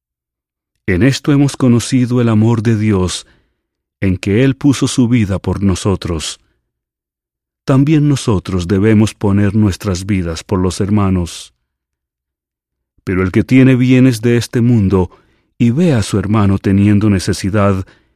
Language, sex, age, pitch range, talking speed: English, male, 40-59, 90-130 Hz, 130 wpm